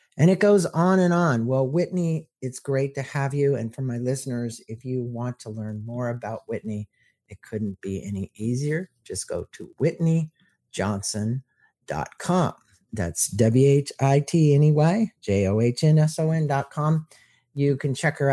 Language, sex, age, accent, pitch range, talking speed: English, male, 50-69, American, 115-150 Hz, 135 wpm